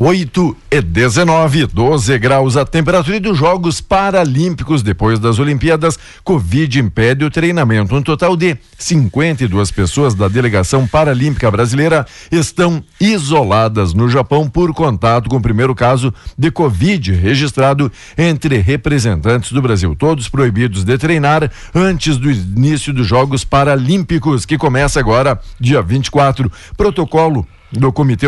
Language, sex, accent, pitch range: Portuguese, male, Brazilian, 120-155 Hz